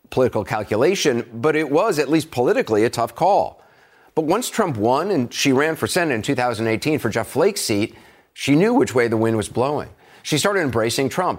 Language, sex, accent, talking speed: English, male, American, 200 wpm